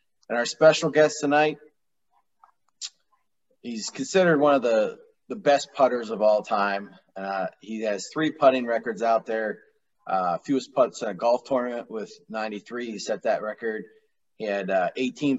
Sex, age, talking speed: male, 30-49, 160 wpm